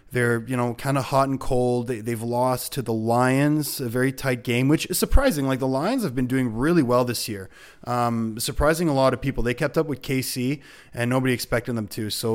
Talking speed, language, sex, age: 235 wpm, English, male, 20-39